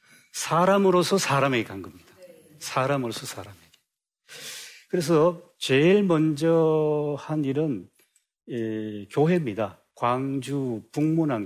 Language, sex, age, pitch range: Korean, male, 40-59, 115-155 Hz